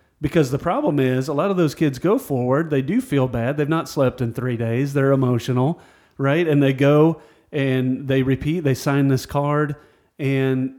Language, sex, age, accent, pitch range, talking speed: English, male, 40-59, American, 130-170 Hz, 195 wpm